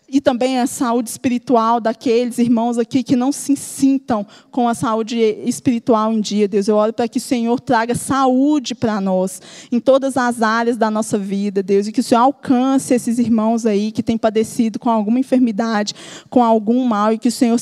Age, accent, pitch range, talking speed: 20-39, Brazilian, 230-260 Hz, 200 wpm